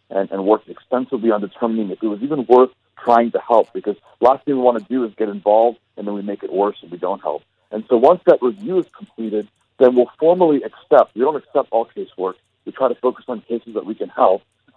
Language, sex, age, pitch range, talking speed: English, male, 50-69, 105-130 Hz, 245 wpm